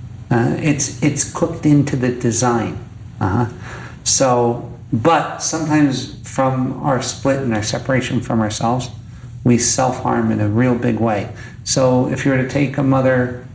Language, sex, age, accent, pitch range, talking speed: English, male, 50-69, American, 115-125 Hz, 155 wpm